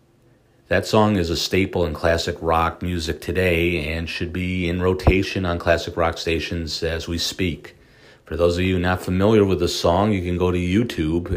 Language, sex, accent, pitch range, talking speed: English, male, American, 85-100 Hz, 190 wpm